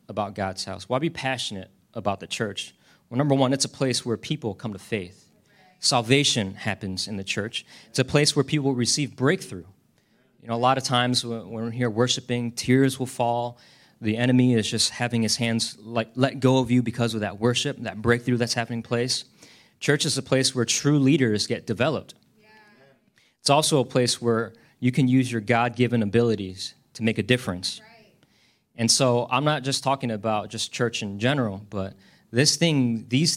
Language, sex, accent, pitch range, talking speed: English, male, American, 115-155 Hz, 190 wpm